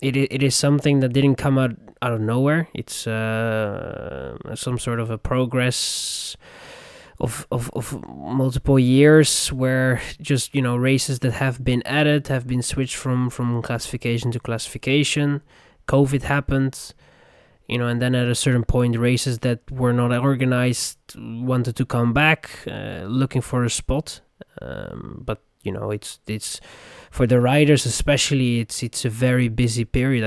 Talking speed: 155 wpm